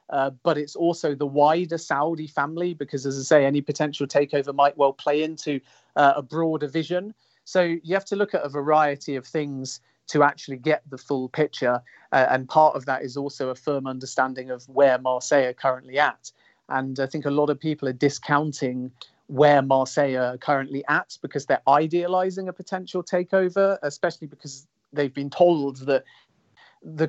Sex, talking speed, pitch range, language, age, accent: male, 180 wpm, 140-165 Hz, English, 40-59, British